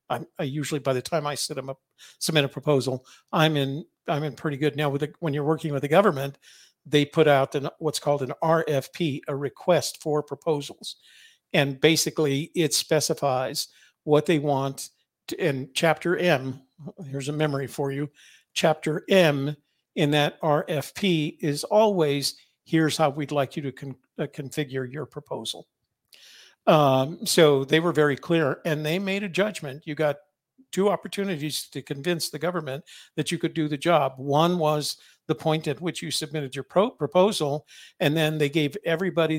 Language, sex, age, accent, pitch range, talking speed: English, male, 50-69, American, 140-160 Hz, 170 wpm